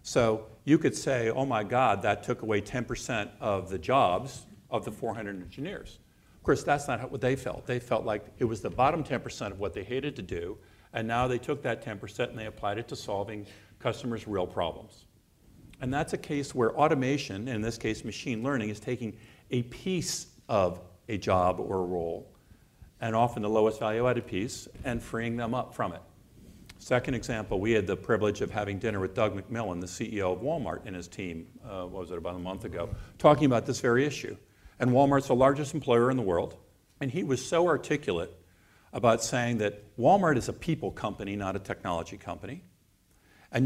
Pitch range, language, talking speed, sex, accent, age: 100-130 Hz, English, 200 wpm, male, American, 50-69